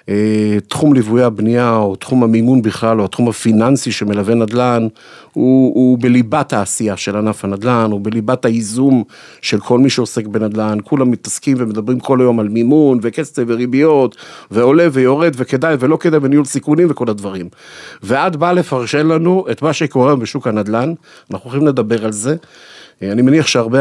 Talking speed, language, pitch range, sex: 155 wpm, Hebrew, 110-130 Hz, male